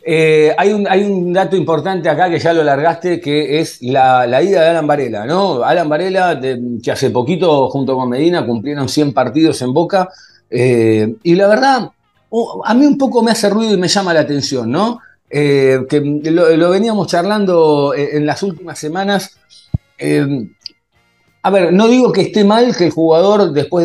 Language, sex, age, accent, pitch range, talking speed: Spanish, male, 40-59, Argentinian, 145-205 Hz, 190 wpm